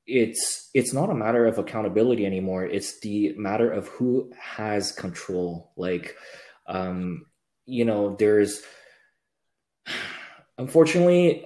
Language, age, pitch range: English, 20-39, 95-110 Hz